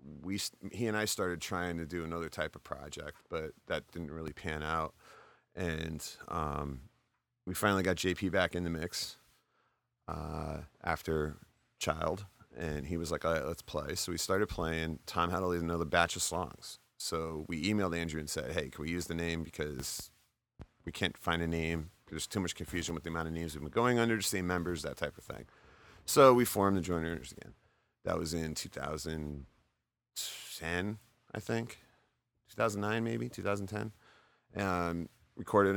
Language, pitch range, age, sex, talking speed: English, 80-95 Hz, 30-49, male, 180 wpm